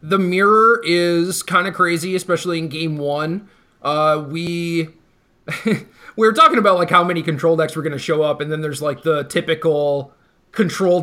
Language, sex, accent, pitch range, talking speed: English, male, American, 150-180 Hz, 180 wpm